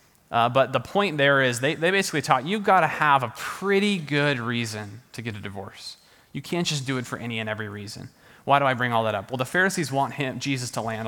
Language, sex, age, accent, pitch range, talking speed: English, male, 30-49, American, 115-145 Hz, 255 wpm